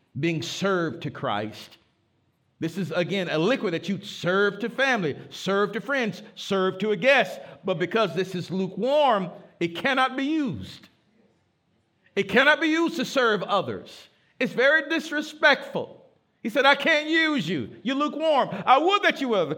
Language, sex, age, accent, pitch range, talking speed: English, male, 50-69, American, 155-235 Hz, 165 wpm